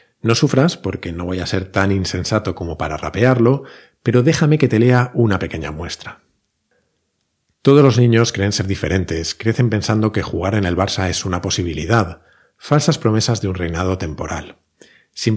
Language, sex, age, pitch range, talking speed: Spanish, male, 40-59, 90-115 Hz, 170 wpm